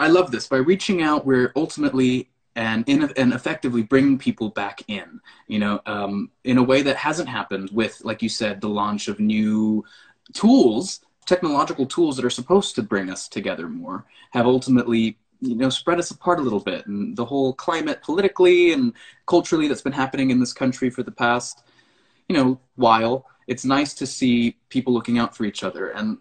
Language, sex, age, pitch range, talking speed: English, male, 20-39, 110-140 Hz, 190 wpm